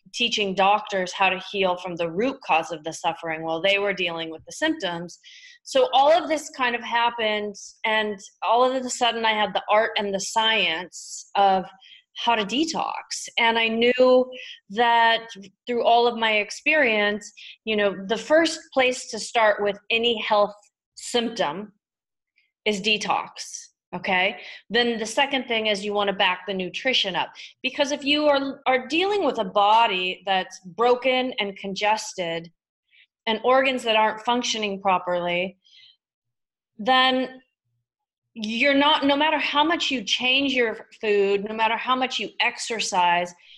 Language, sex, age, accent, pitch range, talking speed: English, female, 30-49, American, 195-255 Hz, 155 wpm